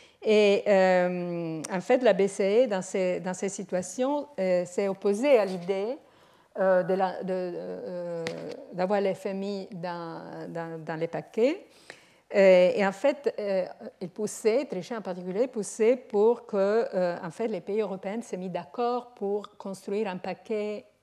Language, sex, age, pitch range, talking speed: French, female, 50-69, 185-225 Hz, 155 wpm